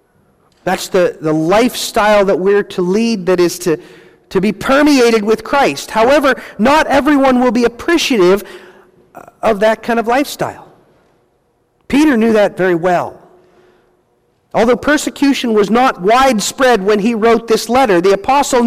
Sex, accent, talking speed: male, American, 140 wpm